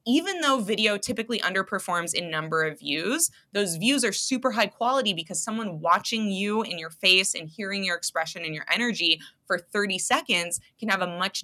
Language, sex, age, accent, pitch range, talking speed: English, female, 20-39, American, 165-220 Hz, 190 wpm